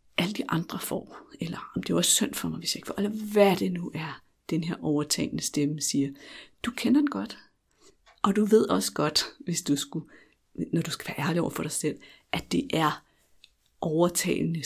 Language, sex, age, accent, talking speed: Danish, female, 60-79, native, 205 wpm